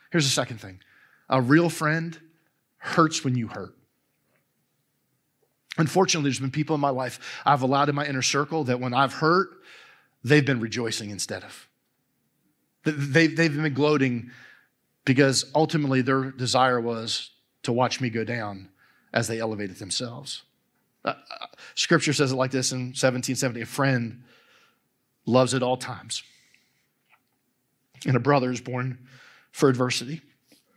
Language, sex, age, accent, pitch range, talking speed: English, male, 40-59, American, 125-155 Hz, 140 wpm